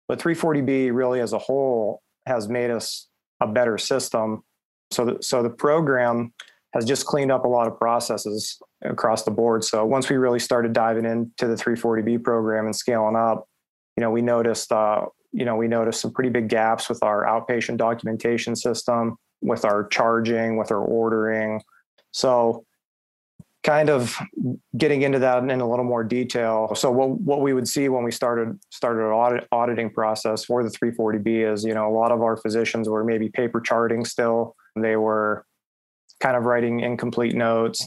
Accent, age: American, 30-49